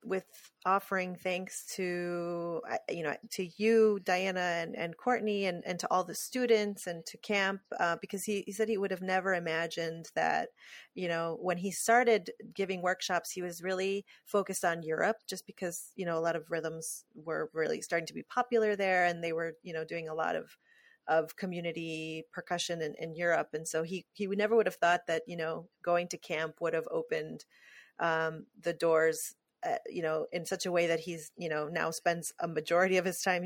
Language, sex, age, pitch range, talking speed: English, female, 30-49, 165-200 Hz, 205 wpm